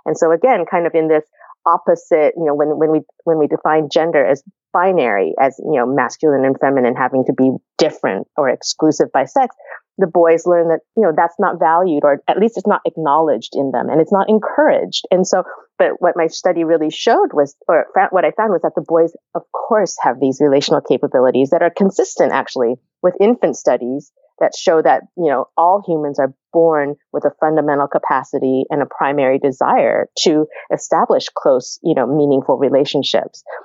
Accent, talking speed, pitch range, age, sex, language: American, 195 wpm, 145-180 Hz, 30-49, female, English